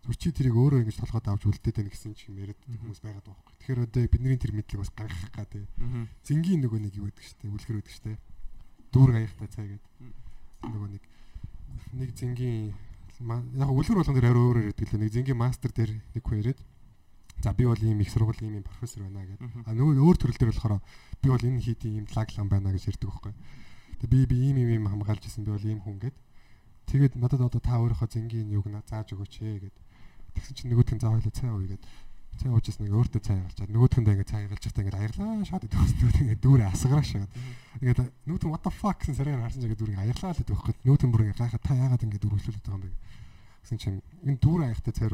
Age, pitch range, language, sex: 20-39, 105-125 Hz, Korean, male